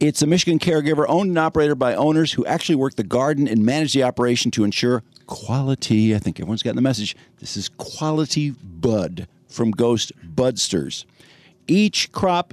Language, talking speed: English, 170 wpm